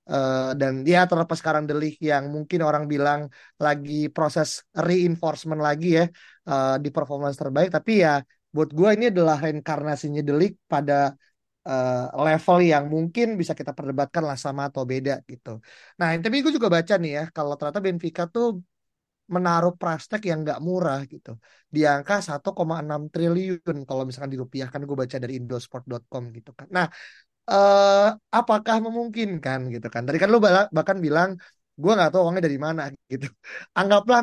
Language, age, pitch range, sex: Indonesian, 20-39, 140-180 Hz, male